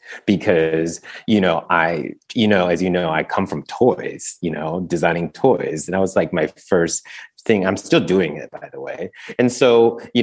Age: 30-49